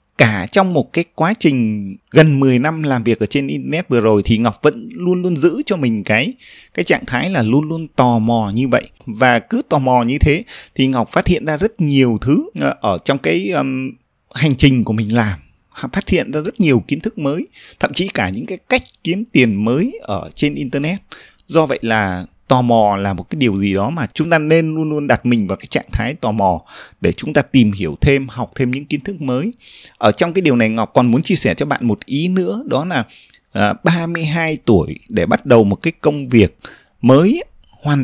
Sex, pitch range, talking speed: male, 115-165 Hz, 225 wpm